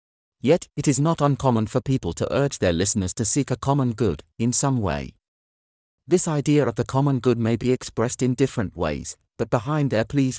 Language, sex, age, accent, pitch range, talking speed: English, male, 40-59, British, 90-135 Hz, 200 wpm